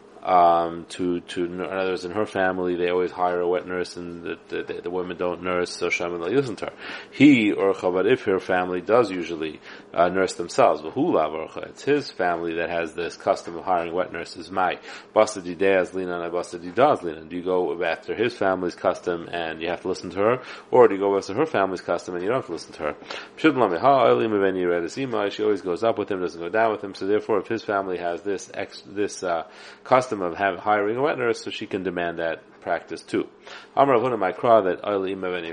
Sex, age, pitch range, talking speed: male, 30-49, 90-110 Hz, 215 wpm